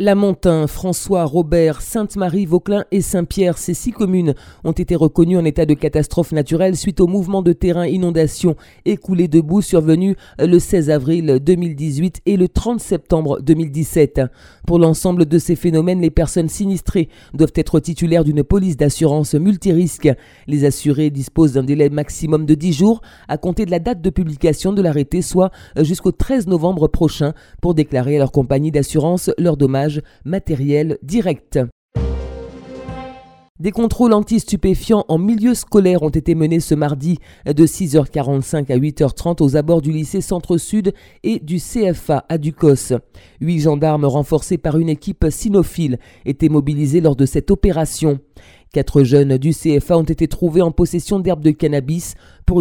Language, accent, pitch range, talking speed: French, French, 145-180 Hz, 155 wpm